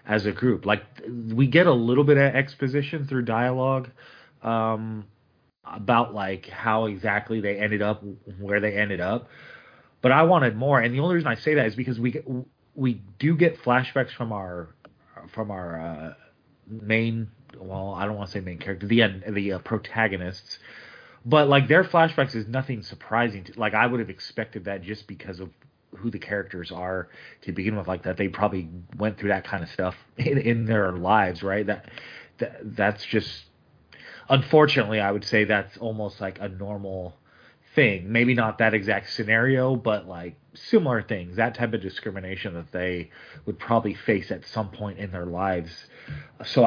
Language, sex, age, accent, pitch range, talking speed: English, male, 30-49, American, 100-120 Hz, 180 wpm